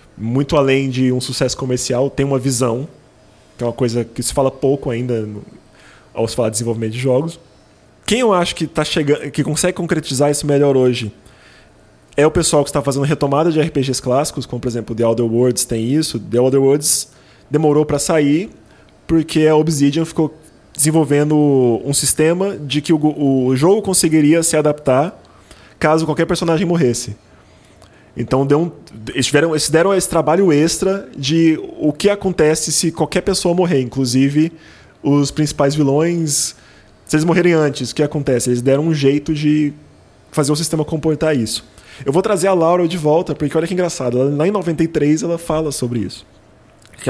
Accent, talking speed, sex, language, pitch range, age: Brazilian, 175 wpm, male, Portuguese, 125-160 Hz, 20-39